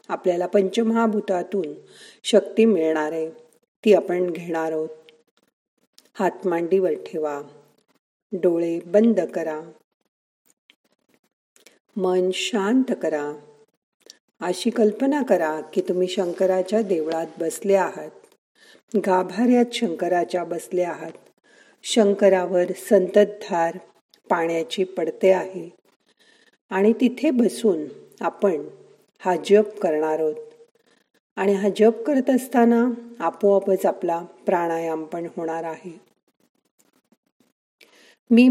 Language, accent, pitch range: Marathi, native, 165-225 Hz